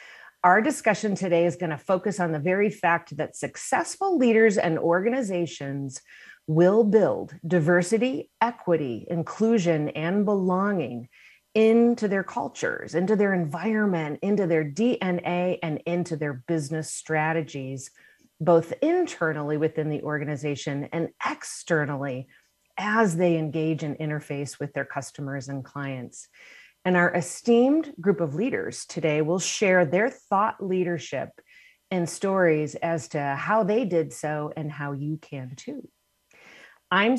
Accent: American